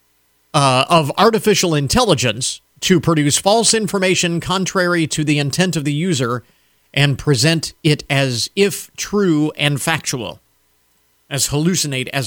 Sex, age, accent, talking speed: male, 50-69, American, 125 wpm